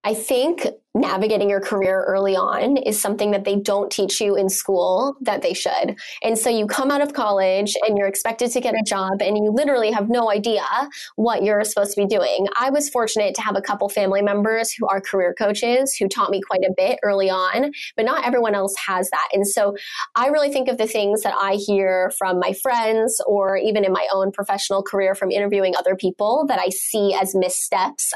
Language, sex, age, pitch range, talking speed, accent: English, female, 20-39, 190-220 Hz, 215 wpm, American